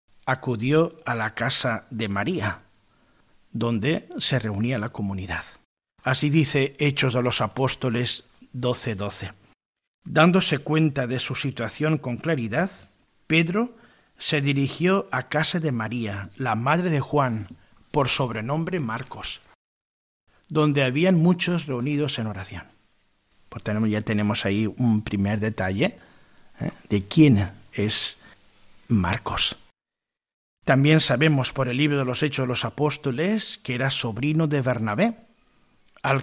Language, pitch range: Spanish, 110-150 Hz